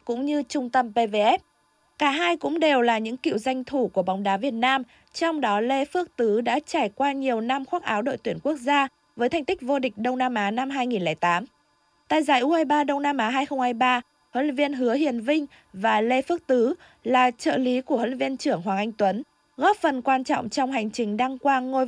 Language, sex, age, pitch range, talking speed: Vietnamese, female, 20-39, 215-280 Hz, 225 wpm